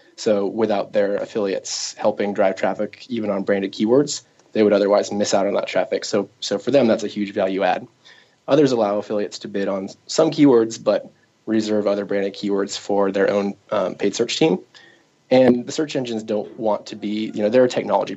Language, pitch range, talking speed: English, 100-110 Hz, 200 wpm